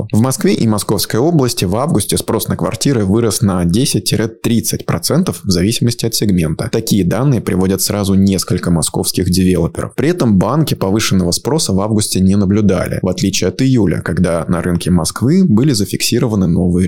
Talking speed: 155 wpm